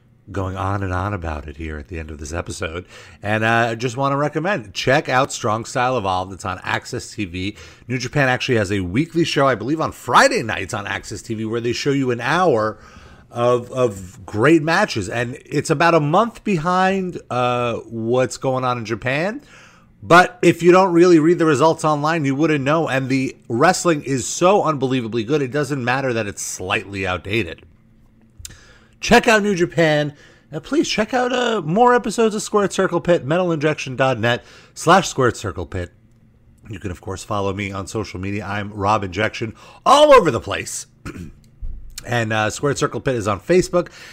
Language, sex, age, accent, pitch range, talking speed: English, male, 30-49, American, 110-160 Hz, 185 wpm